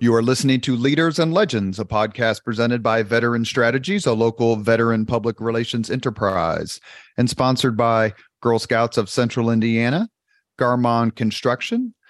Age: 40-59